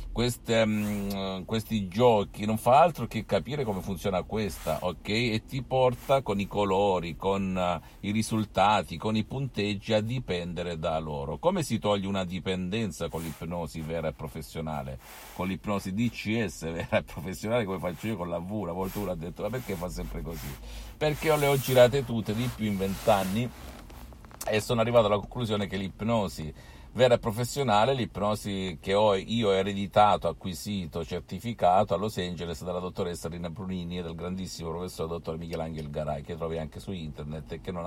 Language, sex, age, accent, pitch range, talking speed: Italian, male, 50-69, native, 85-110 Hz, 170 wpm